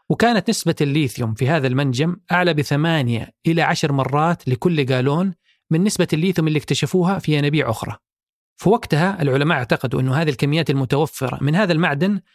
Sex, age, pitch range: male, 40-59, 135-175 Hz